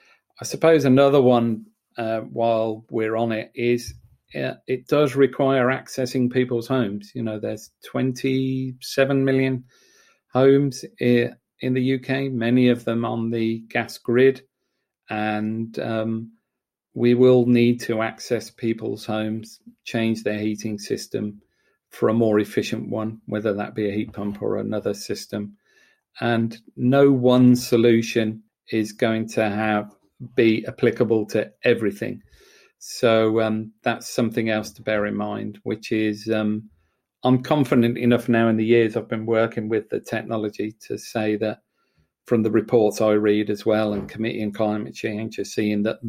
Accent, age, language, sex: British, 40-59, English, male